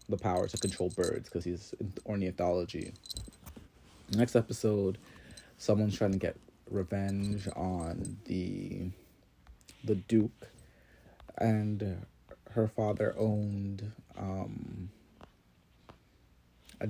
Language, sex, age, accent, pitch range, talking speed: English, male, 30-49, American, 90-110 Hz, 90 wpm